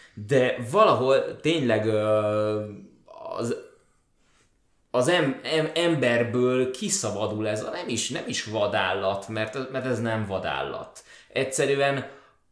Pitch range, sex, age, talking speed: 100-125 Hz, male, 20-39, 110 wpm